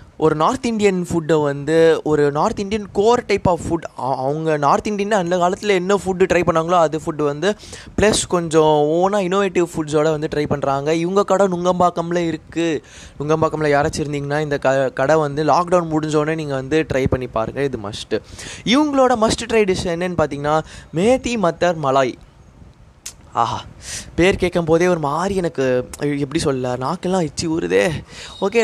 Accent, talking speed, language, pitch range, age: native, 150 wpm, Tamil, 145-195 Hz, 20-39